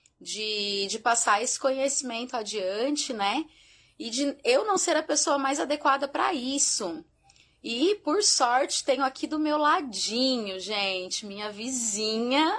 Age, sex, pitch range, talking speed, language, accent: 20-39, female, 200-250 Hz, 140 wpm, Portuguese, Brazilian